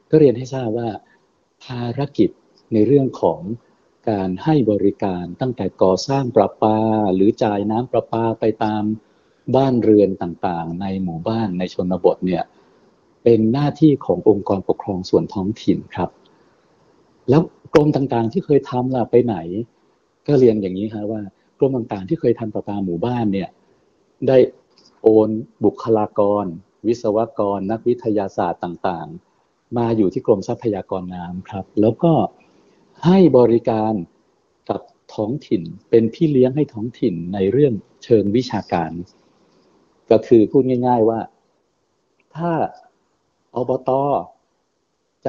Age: 60-79